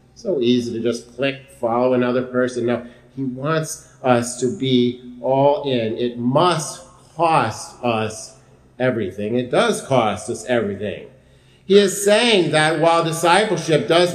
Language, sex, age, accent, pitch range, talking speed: English, male, 50-69, American, 125-175 Hz, 140 wpm